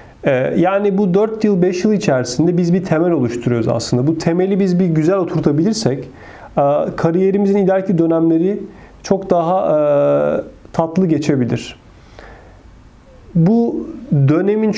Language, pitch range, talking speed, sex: Turkish, 135-190 Hz, 110 wpm, male